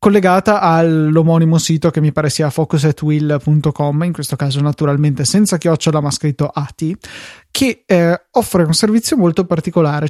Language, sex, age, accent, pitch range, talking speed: Italian, male, 20-39, native, 155-180 Hz, 145 wpm